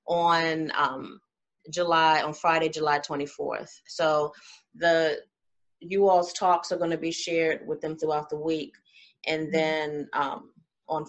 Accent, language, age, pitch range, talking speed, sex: American, English, 30-49, 155-175 Hz, 140 wpm, female